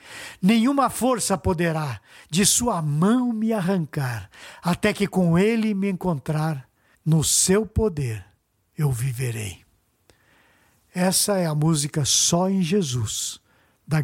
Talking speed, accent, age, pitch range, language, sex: 115 wpm, Brazilian, 60-79, 140-195 Hz, Portuguese, male